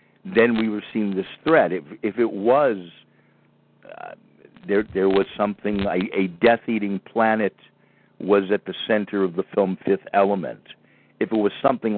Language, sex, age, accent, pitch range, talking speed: English, male, 50-69, American, 100-140 Hz, 160 wpm